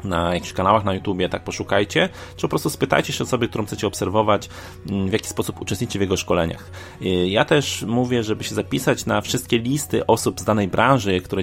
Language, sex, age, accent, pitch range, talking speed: Polish, male, 30-49, native, 95-115 Hz, 195 wpm